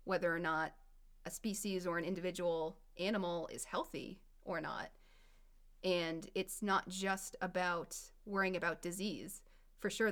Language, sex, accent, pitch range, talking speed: English, female, American, 165-200 Hz, 135 wpm